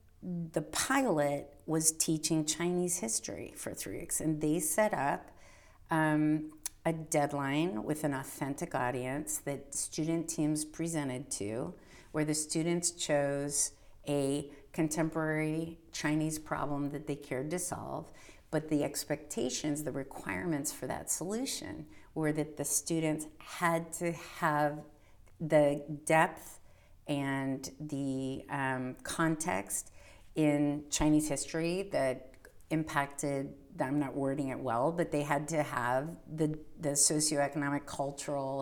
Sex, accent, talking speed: female, American, 120 wpm